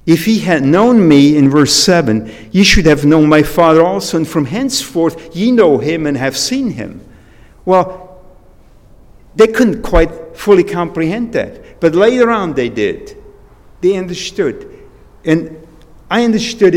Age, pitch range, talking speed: 50-69, 145-195 Hz, 150 wpm